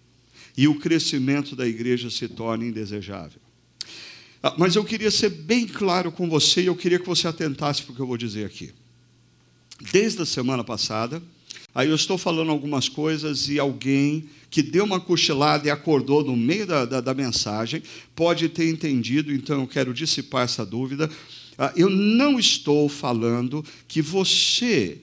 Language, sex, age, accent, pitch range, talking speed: Portuguese, male, 50-69, Brazilian, 125-170 Hz, 165 wpm